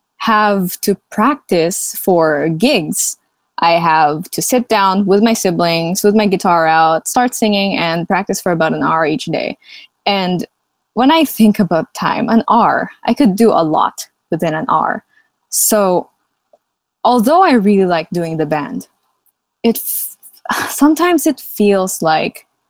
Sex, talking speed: female, 150 wpm